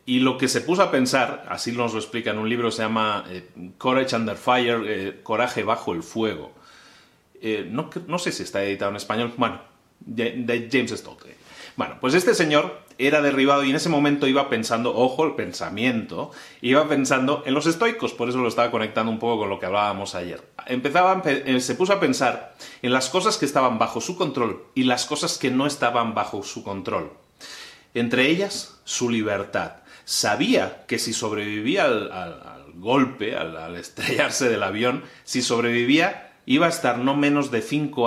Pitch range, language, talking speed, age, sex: 110-145 Hz, Spanish, 190 wpm, 30-49, male